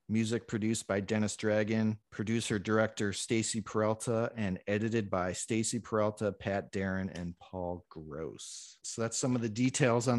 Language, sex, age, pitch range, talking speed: English, male, 40-59, 100-120 Hz, 155 wpm